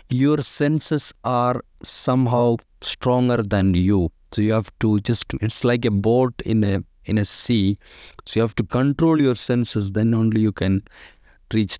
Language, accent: English, Indian